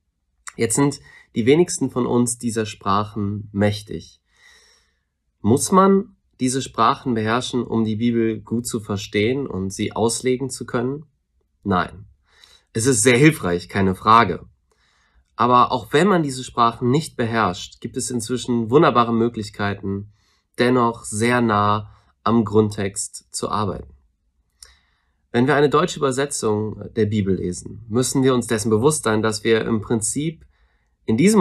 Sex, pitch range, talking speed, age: male, 100-130 Hz, 140 wpm, 30-49